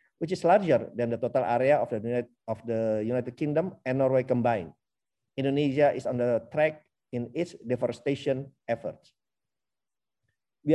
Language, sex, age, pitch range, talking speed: Indonesian, male, 50-69, 125-150 Hz, 140 wpm